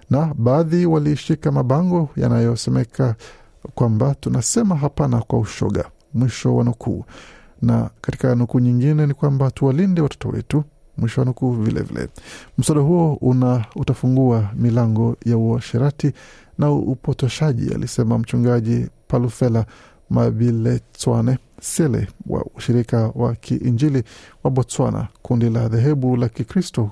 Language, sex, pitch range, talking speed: Swahili, male, 120-145 Hz, 120 wpm